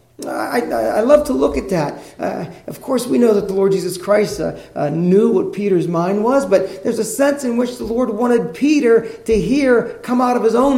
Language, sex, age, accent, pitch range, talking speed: English, male, 30-49, American, 175-230 Hz, 230 wpm